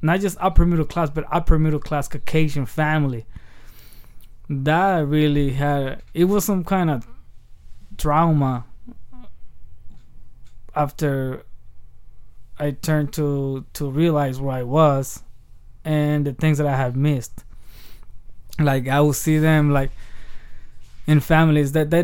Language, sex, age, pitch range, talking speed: English, male, 20-39, 130-155 Hz, 115 wpm